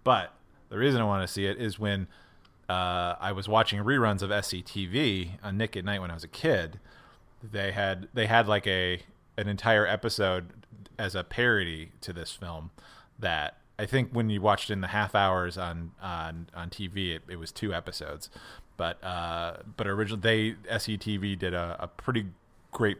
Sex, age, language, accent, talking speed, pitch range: male, 30-49, English, American, 185 wpm, 95-115 Hz